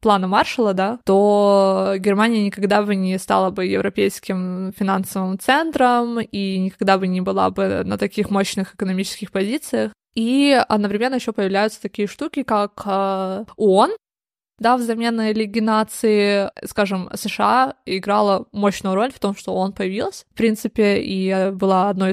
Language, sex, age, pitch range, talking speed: Russian, female, 20-39, 195-225 Hz, 135 wpm